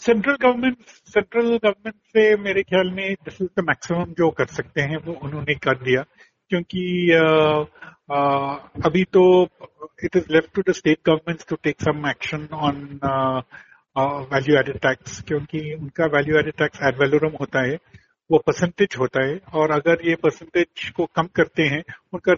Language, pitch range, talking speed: Hindi, 145-180 Hz, 140 wpm